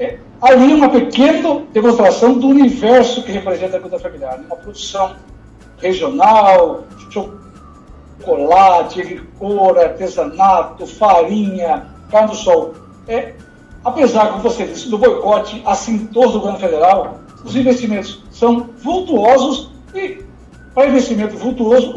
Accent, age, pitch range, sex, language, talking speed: Brazilian, 60-79, 195-260 Hz, male, Portuguese, 120 wpm